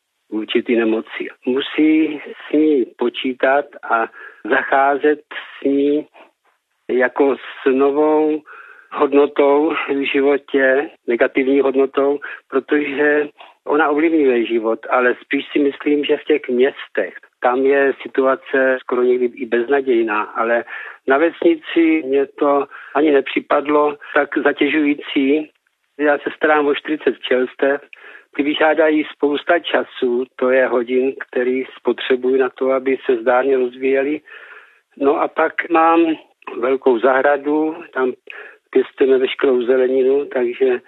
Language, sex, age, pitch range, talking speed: Czech, male, 50-69, 130-150 Hz, 115 wpm